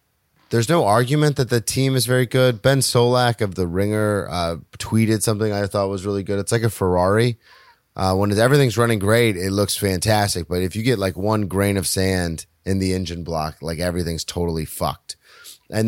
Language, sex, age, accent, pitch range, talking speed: English, male, 30-49, American, 95-120 Hz, 195 wpm